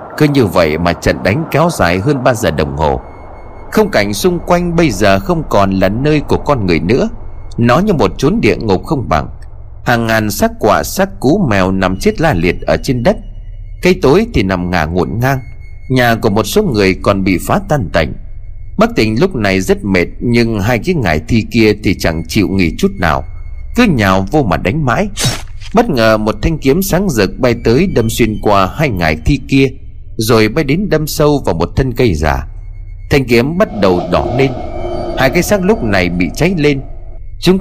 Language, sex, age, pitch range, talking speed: Vietnamese, male, 30-49, 95-145 Hz, 210 wpm